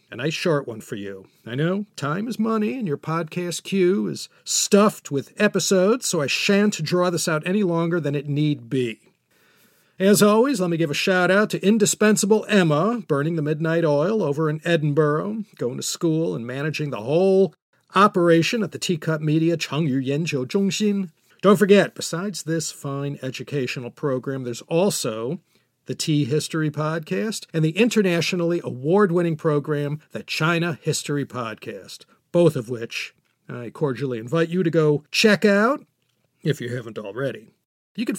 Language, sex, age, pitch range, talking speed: English, male, 40-59, 145-200 Hz, 160 wpm